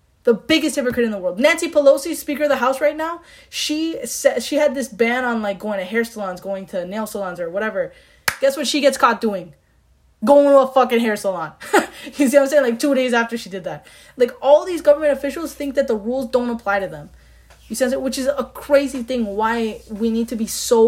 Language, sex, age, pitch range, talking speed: English, female, 10-29, 190-265 Hz, 235 wpm